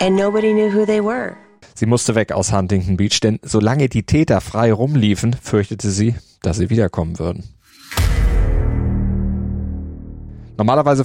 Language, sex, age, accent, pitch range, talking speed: German, male, 30-49, German, 105-130 Hz, 105 wpm